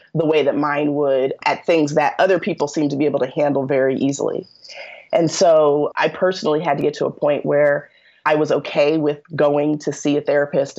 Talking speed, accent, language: 210 wpm, American, English